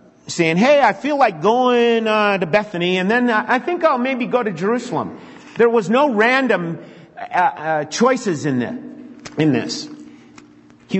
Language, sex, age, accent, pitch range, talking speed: English, male, 50-69, American, 145-215 Hz, 160 wpm